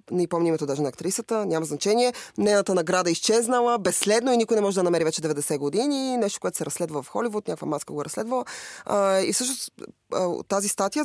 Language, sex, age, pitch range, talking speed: Bulgarian, female, 20-39, 155-215 Hz, 200 wpm